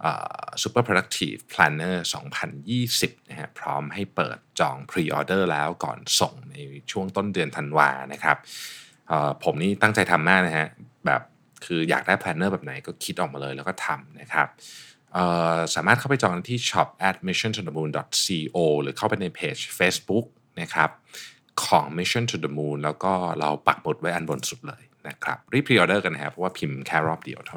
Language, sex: Thai, male